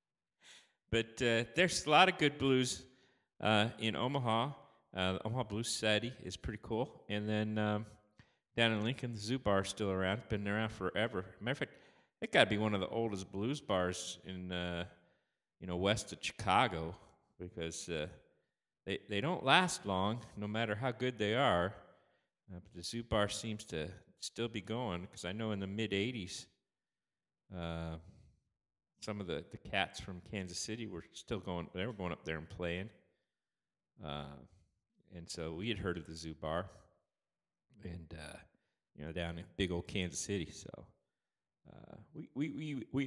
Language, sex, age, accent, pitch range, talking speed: English, male, 40-59, American, 90-115 Hz, 180 wpm